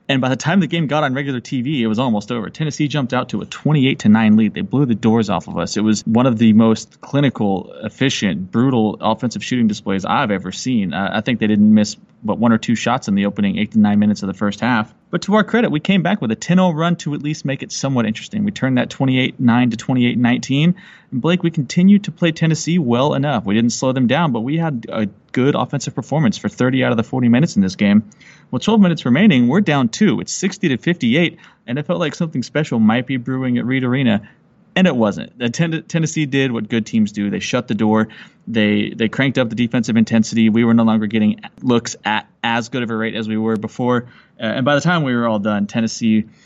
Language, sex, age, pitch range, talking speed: English, male, 30-49, 110-155 Hz, 250 wpm